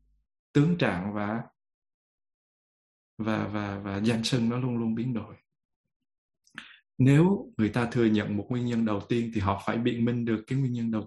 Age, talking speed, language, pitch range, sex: 20-39, 180 wpm, Vietnamese, 110-140 Hz, male